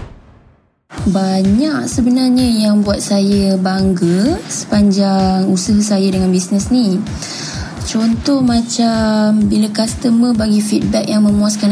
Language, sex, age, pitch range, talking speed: Malay, female, 20-39, 205-240 Hz, 100 wpm